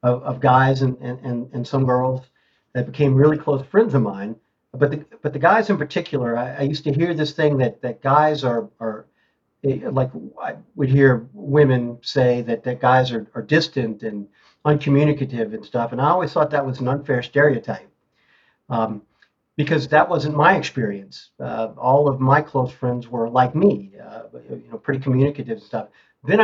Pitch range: 125-155 Hz